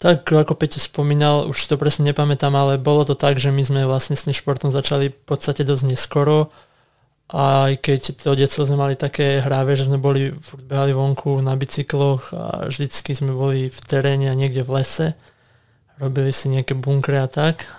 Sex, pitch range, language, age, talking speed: male, 135-145 Hz, Slovak, 20-39, 180 wpm